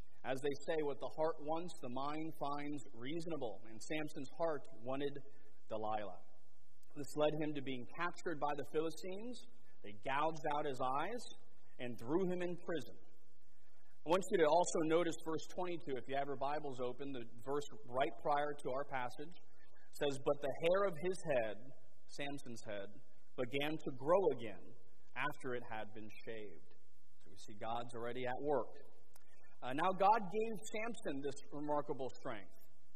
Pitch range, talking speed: 130-165 Hz, 160 wpm